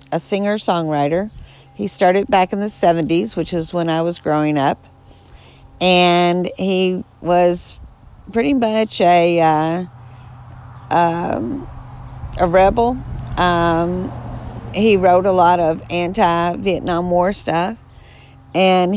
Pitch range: 145-180 Hz